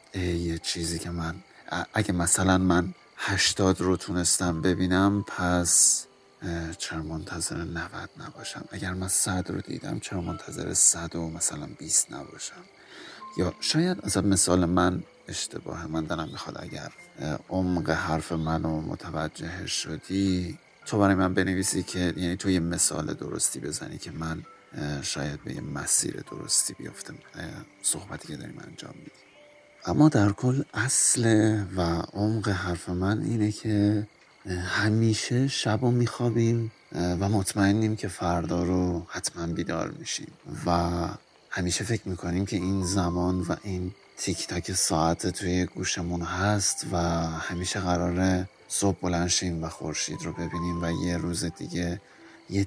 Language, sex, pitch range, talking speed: Persian, male, 85-100 Hz, 135 wpm